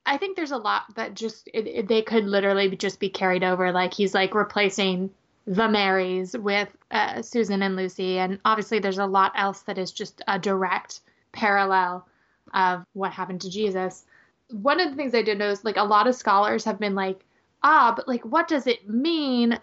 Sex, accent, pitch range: female, American, 195-240 Hz